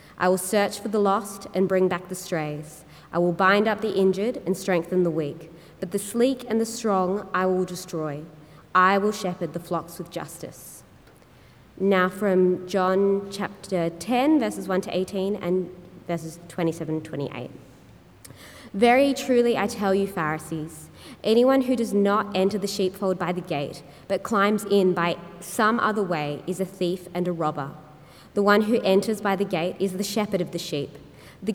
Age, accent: 20-39, Australian